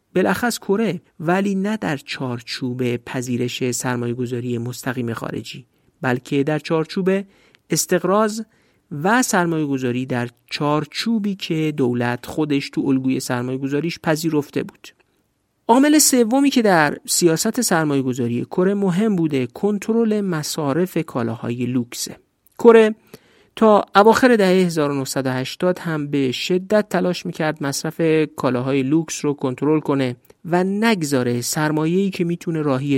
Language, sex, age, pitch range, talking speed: Persian, male, 50-69, 135-190 Hz, 115 wpm